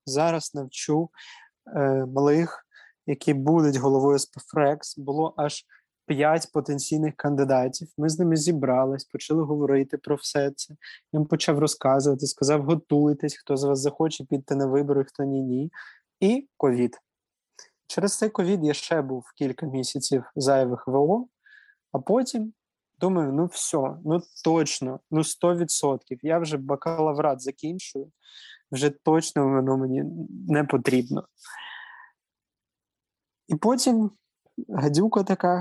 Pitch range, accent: 140-175 Hz, native